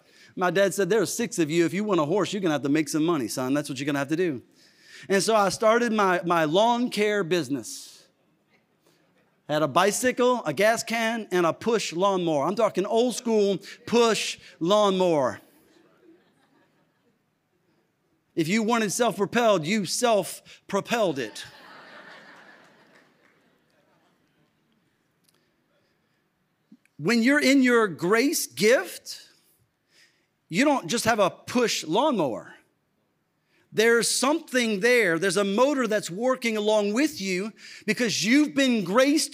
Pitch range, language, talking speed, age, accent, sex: 195-245 Hz, English, 135 wpm, 40-59, American, male